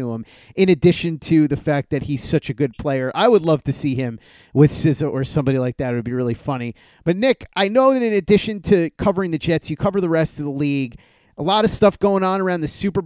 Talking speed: 255 wpm